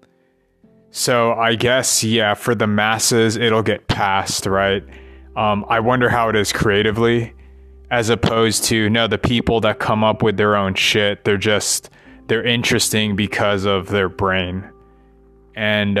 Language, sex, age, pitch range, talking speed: English, male, 20-39, 100-120 Hz, 150 wpm